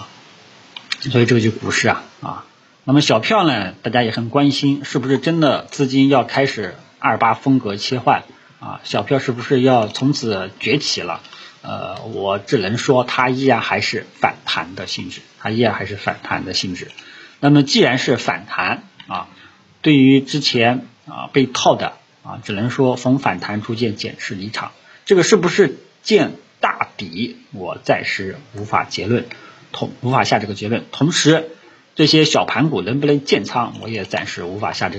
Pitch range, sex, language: 110-145 Hz, male, Chinese